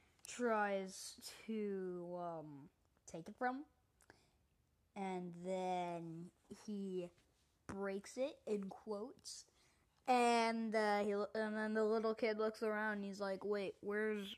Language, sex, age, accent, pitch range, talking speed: English, female, 20-39, American, 185-225 Hz, 120 wpm